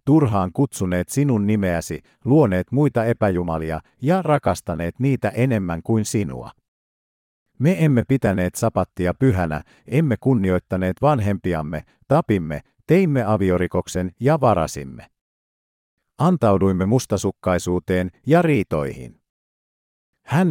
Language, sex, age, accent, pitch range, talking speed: Finnish, male, 50-69, native, 90-130 Hz, 90 wpm